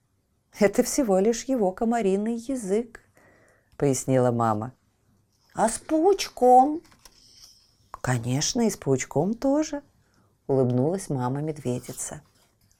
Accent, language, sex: native, Russian, female